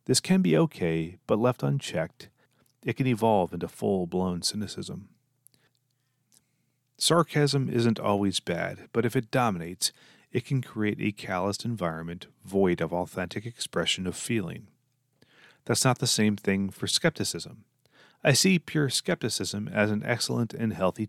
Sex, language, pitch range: male, English, 95-130 Hz